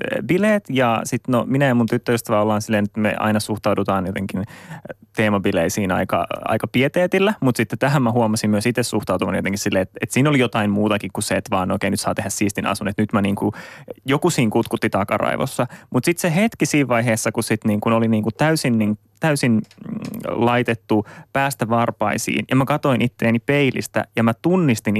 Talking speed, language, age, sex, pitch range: 185 wpm, Finnish, 20-39, male, 105-140 Hz